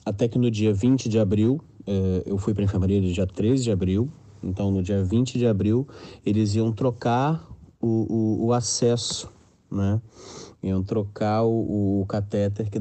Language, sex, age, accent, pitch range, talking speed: English, male, 30-49, Brazilian, 95-115 Hz, 185 wpm